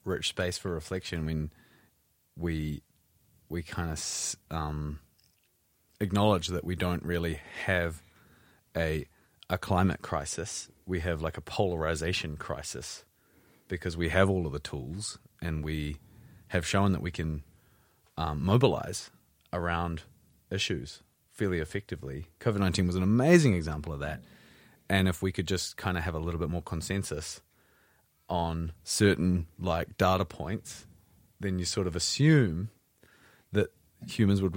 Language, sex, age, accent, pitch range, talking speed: English, male, 30-49, Australian, 80-100 Hz, 140 wpm